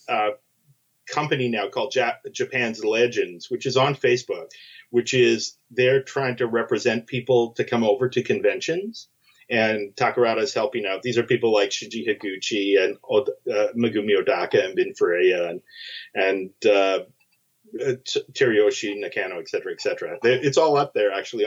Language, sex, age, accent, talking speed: English, male, 40-59, American, 150 wpm